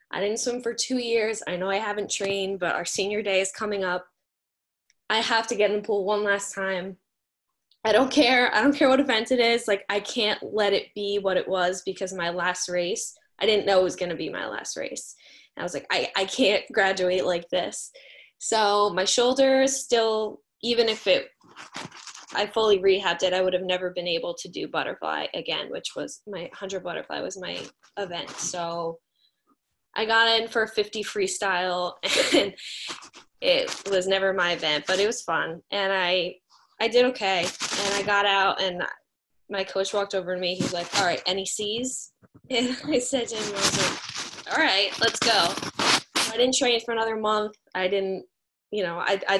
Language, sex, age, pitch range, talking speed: English, female, 10-29, 185-225 Hz, 200 wpm